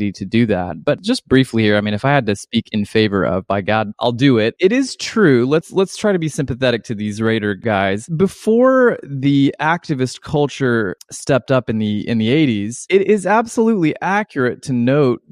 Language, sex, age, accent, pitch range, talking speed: English, male, 20-39, American, 115-155 Hz, 205 wpm